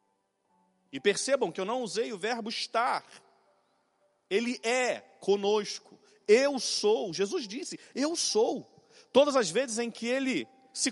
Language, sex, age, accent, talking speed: Portuguese, male, 40-59, Brazilian, 135 wpm